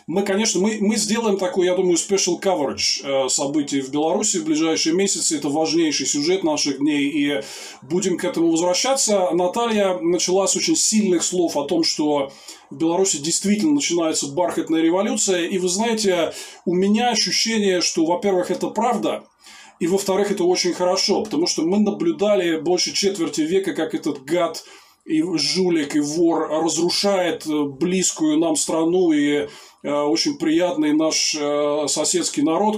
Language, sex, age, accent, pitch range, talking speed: Russian, male, 20-39, native, 160-210 Hz, 150 wpm